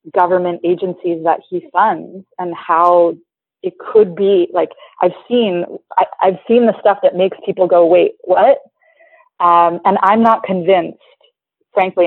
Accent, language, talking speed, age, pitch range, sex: American, English, 150 wpm, 30-49, 175-225 Hz, female